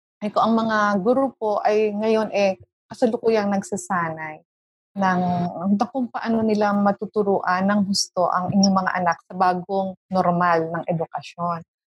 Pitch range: 195-245 Hz